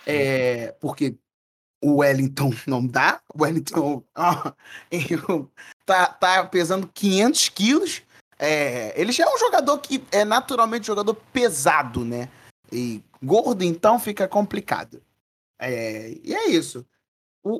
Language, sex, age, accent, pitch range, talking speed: Portuguese, male, 20-39, Brazilian, 145-240 Hz, 125 wpm